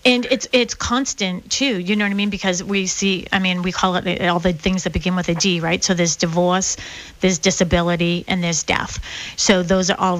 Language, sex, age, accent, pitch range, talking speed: English, female, 30-49, American, 180-200 Hz, 230 wpm